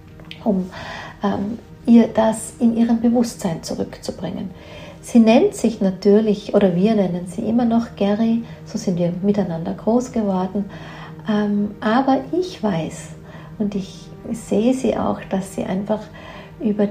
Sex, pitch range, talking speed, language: female, 195-225 Hz, 135 wpm, German